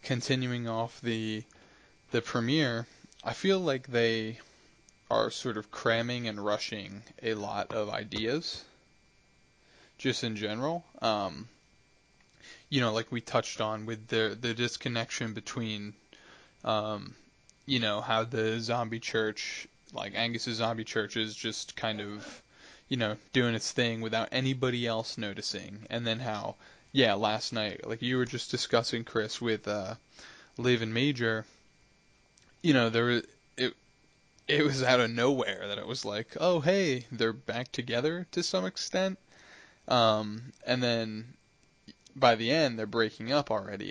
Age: 20-39